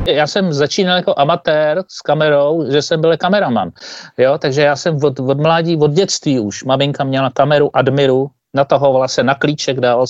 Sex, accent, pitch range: male, native, 130-170 Hz